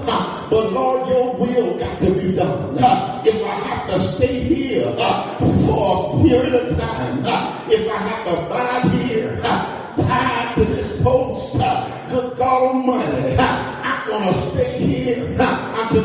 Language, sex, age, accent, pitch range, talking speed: English, male, 50-69, American, 235-260 Hz, 170 wpm